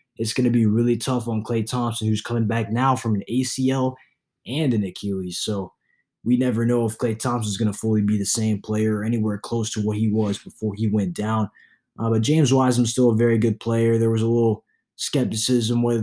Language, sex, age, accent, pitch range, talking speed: English, male, 20-39, American, 105-120 Hz, 230 wpm